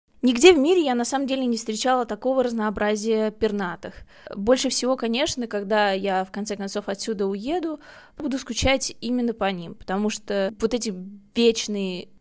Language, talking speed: Russian, 155 wpm